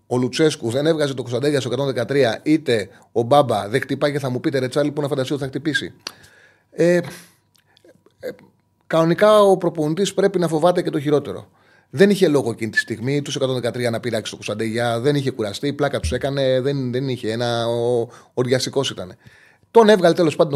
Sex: male